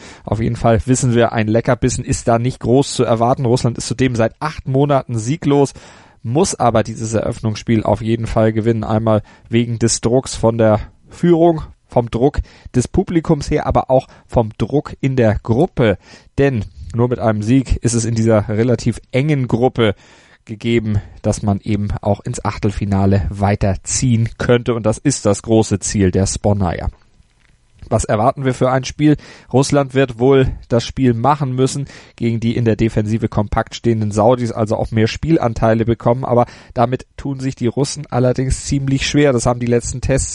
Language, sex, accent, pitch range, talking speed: German, male, German, 110-130 Hz, 175 wpm